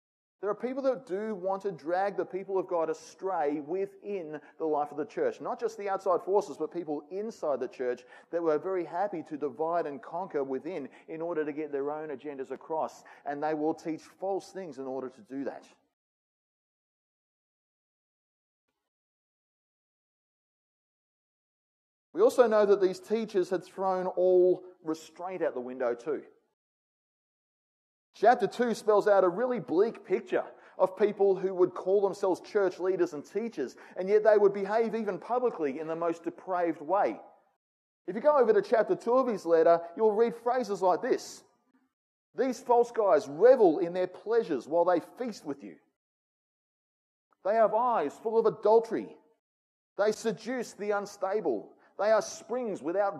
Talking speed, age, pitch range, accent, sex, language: 160 wpm, 30-49, 170-230 Hz, Australian, male, English